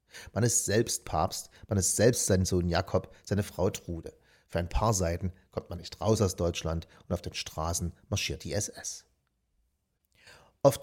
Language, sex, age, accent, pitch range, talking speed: German, male, 40-59, German, 90-100 Hz, 170 wpm